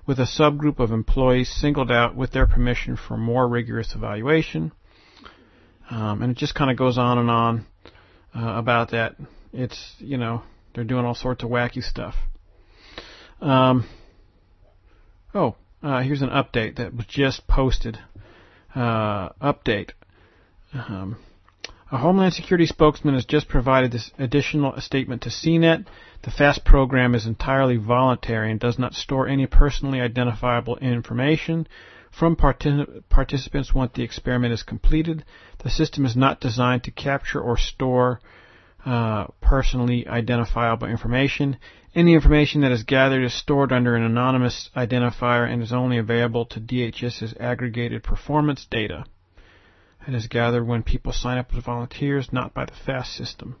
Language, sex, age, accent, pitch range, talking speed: English, male, 50-69, American, 115-135 Hz, 145 wpm